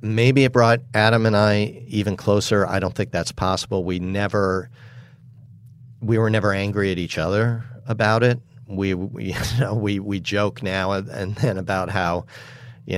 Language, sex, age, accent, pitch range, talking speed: English, male, 50-69, American, 95-120 Hz, 170 wpm